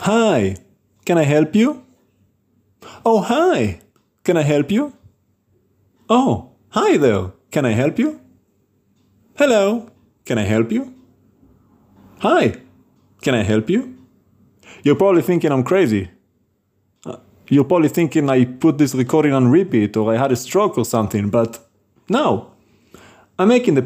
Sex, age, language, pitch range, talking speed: male, 30-49, English, 110-170 Hz, 135 wpm